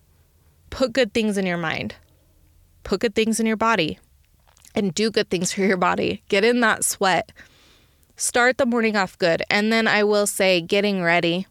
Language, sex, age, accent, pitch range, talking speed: English, female, 20-39, American, 165-205 Hz, 180 wpm